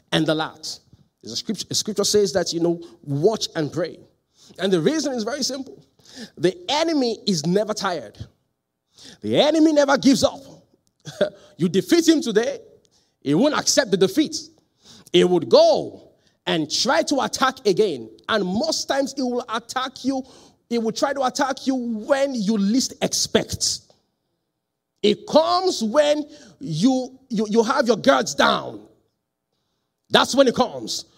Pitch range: 175-270 Hz